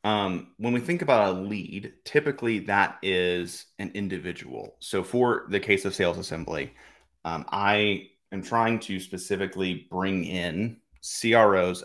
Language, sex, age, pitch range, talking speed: English, male, 30-49, 95-115 Hz, 140 wpm